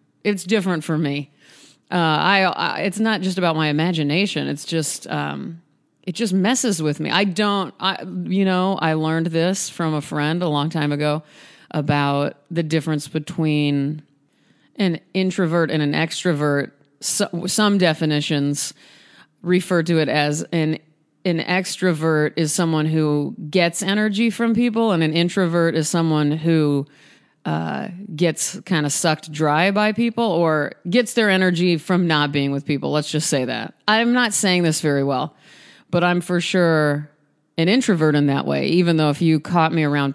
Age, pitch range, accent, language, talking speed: 30-49, 150-190 Hz, American, English, 165 wpm